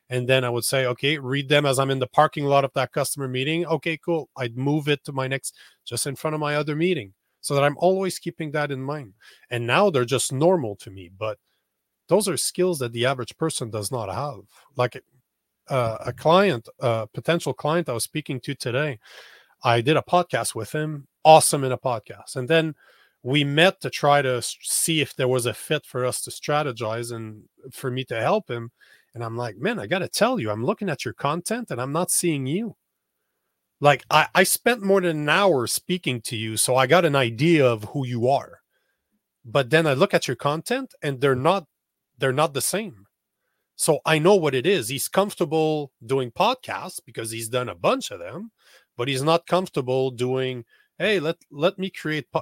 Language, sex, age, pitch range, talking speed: English, male, 40-59, 125-165 Hz, 210 wpm